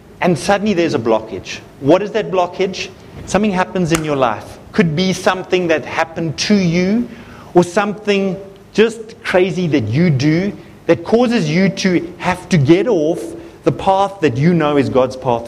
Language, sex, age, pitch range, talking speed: English, male, 30-49, 130-185 Hz, 170 wpm